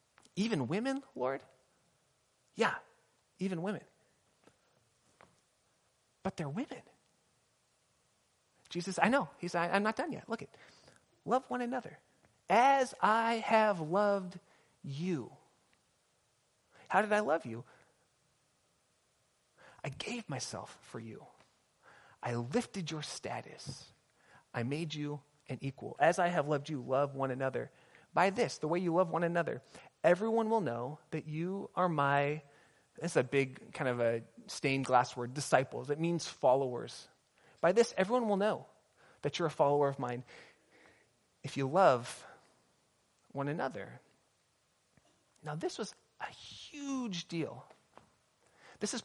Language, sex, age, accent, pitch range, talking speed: English, male, 30-49, American, 140-195 Hz, 130 wpm